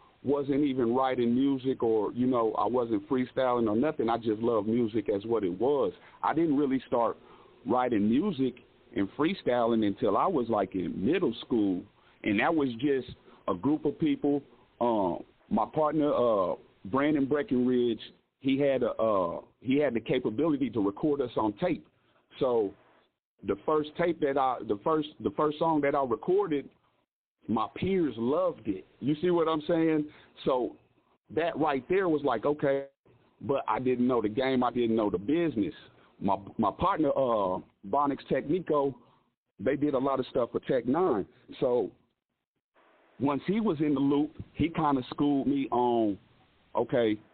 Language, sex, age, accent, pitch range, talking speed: English, male, 40-59, American, 120-150 Hz, 165 wpm